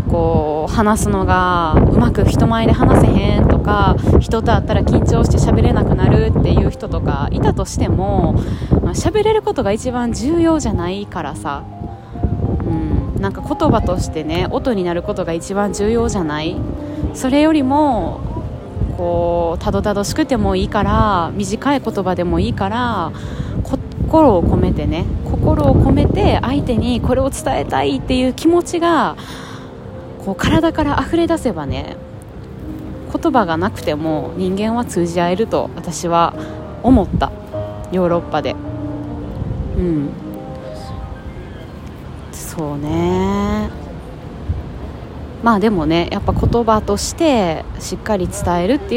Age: 20-39